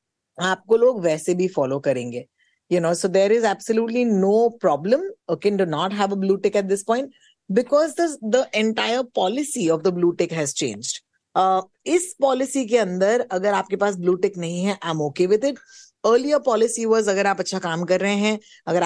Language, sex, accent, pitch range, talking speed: Hindi, female, native, 180-245 Hz, 170 wpm